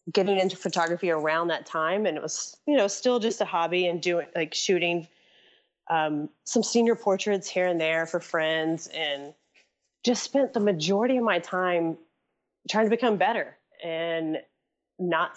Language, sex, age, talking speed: English, female, 30-49, 165 wpm